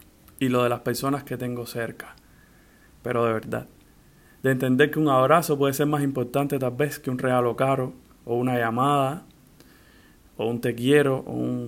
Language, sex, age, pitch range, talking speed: Spanish, male, 20-39, 120-140 Hz, 180 wpm